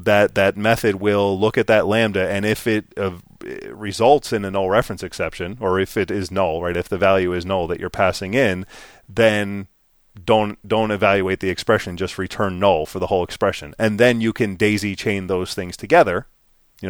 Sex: male